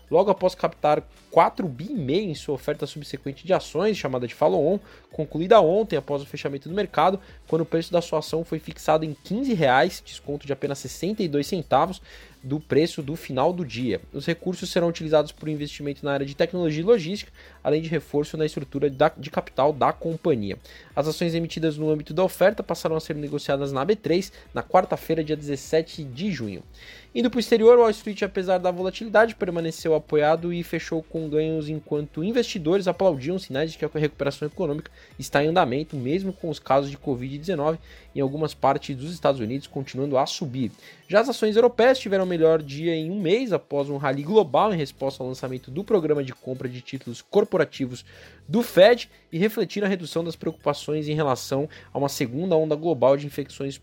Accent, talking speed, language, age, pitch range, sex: Brazilian, 190 wpm, Portuguese, 20-39, 145-180 Hz, male